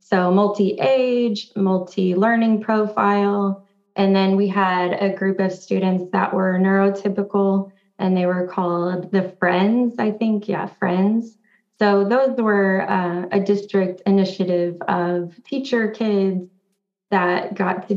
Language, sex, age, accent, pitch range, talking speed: English, female, 20-39, American, 185-205 Hz, 125 wpm